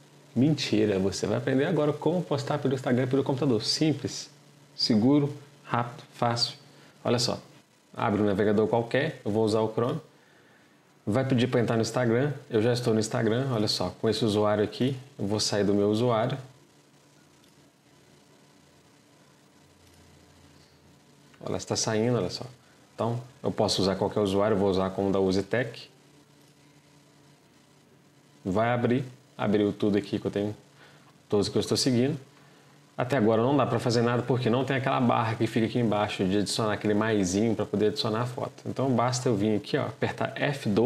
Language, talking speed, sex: Portuguese, 165 wpm, male